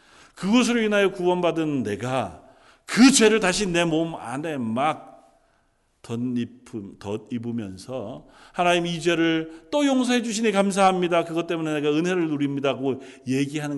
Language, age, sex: Korean, 40-59, male